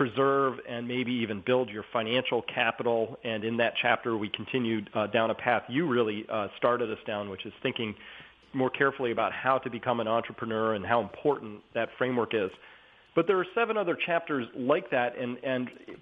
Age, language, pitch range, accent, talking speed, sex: 40-59, English, 115-140 Hz, American, 195 wpm, male